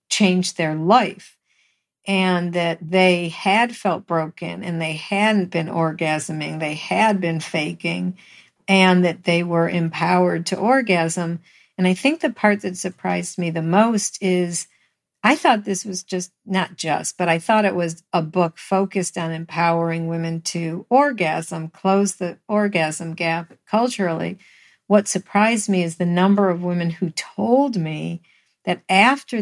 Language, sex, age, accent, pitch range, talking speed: English, female, 50-69, American, 170-210 Hz, 150 wpm